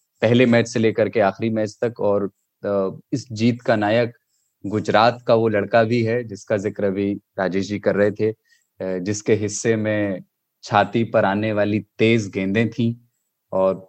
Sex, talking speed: male, 150 wpm